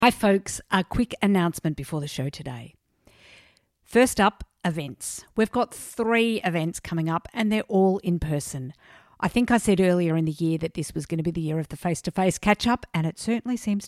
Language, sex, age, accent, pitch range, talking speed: English, female, 50-69, Australian, 165-225 Hz, 205 wpm